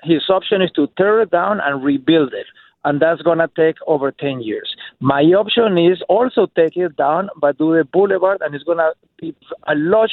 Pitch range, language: 160-200 Hz, English